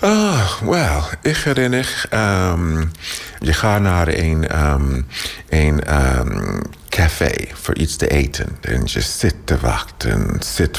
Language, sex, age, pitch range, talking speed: Dutch, male, 50-69, 70-80 Hz, 135 wpm